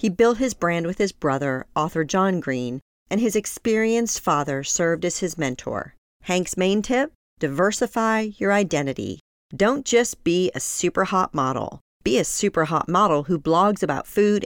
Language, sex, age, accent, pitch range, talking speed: English, female, 40-59, American, 155-225 Hz, 165 wpm